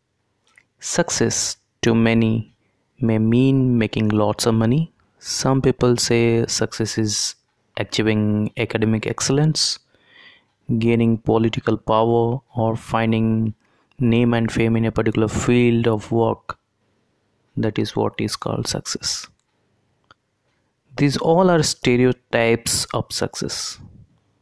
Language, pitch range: Hindi, 110-125 Hz